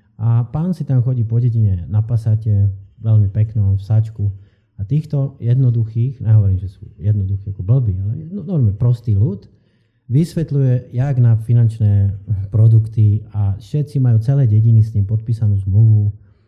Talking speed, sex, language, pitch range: 150 wpm, male, Slovak, 105-120 Hz